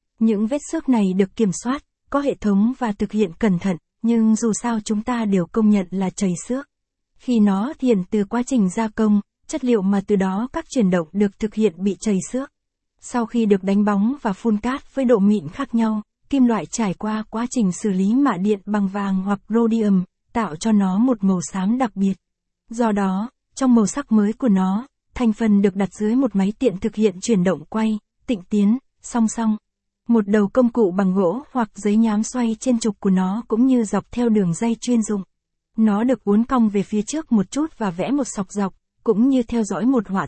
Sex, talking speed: female, 225 wpm